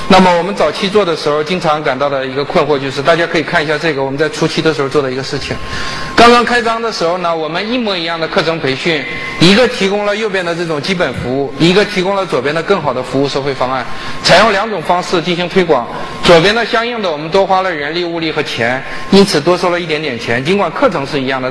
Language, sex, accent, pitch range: Chinese, male, native, 140-185 Hz